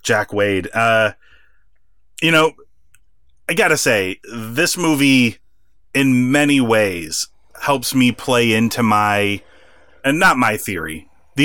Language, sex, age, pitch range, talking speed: English, male, 30-49, 105-140 Hz, 125 wpm